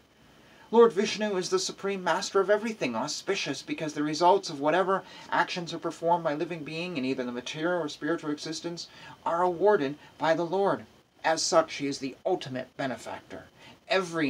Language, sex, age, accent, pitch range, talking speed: English, male, 30-49, American, 135-175 Hz, 170 wpm